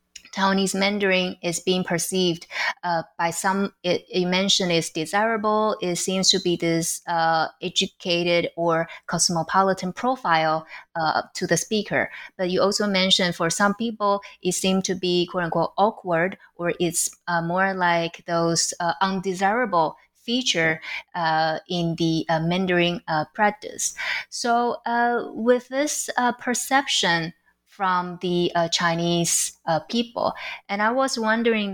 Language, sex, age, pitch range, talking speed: English, female, 20-39, 175-220 Hz, 140 wpm